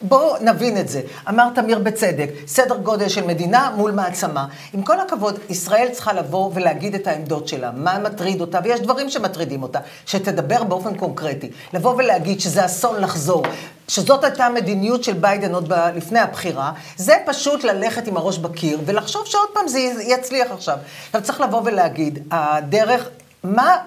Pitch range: 175-240 Hz